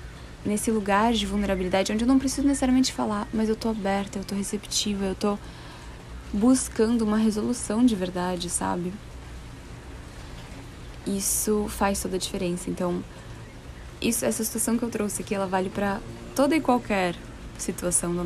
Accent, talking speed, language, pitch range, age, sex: Brazilian, 150 wpm, Portuguese, 180-210 Hz, 10-29, female